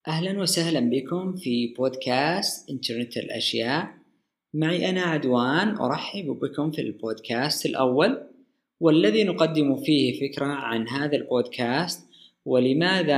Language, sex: Arabic, female